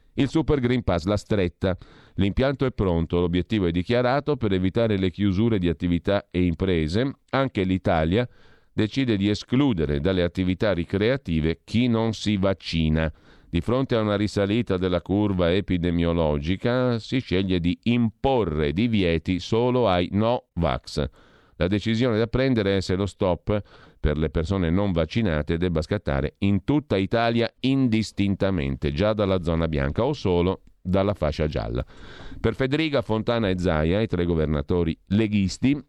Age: 50-69